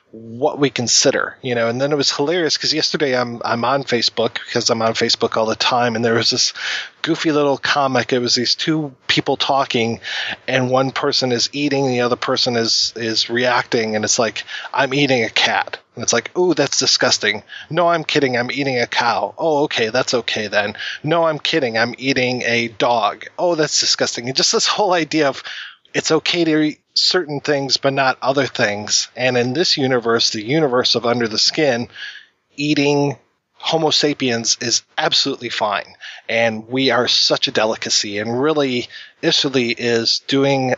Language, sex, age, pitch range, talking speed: English, male, 20-39, 120-145 Hz, 185 wpm